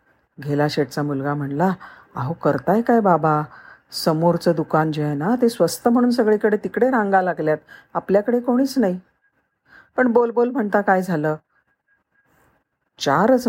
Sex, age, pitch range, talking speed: female, 50-69, 150-205 Hz, 115 wpm